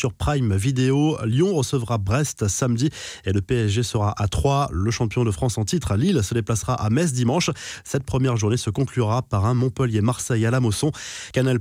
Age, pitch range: 20-39, 110-140 Hz